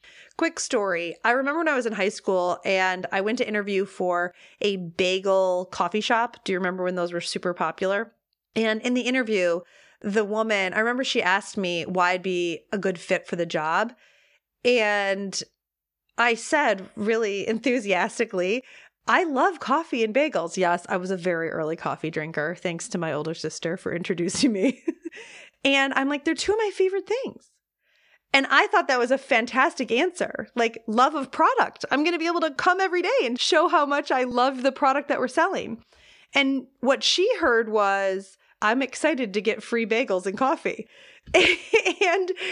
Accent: American